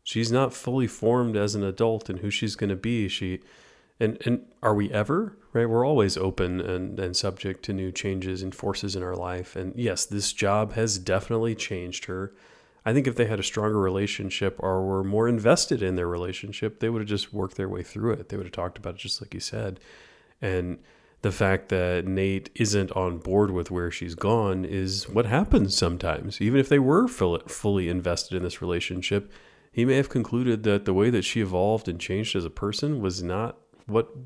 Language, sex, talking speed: English, male, 210 wpm